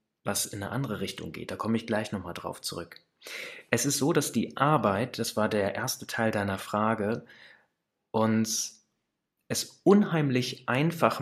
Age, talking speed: 30-49, 160 wpm